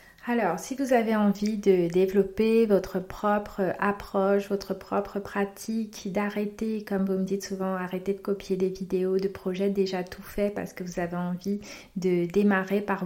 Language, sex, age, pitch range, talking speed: French, female, 30-49, 185-210 Hz, 170 wpm